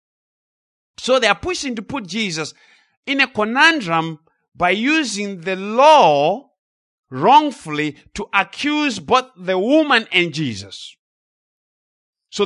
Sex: male